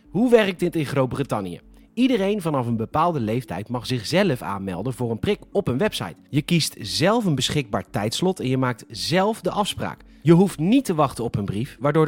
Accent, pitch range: Dutch, 120-180 Hz